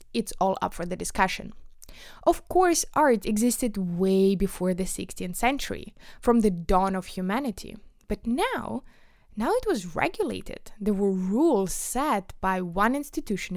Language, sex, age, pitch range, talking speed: English, female, 20-39, 185-245 Hz, 145 wpm